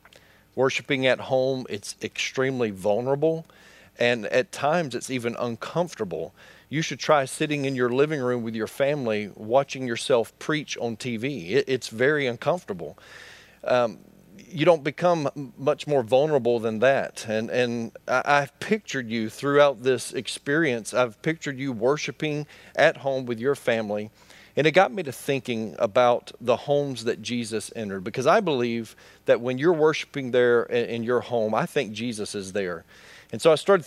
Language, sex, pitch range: English, male, 115-140 Hz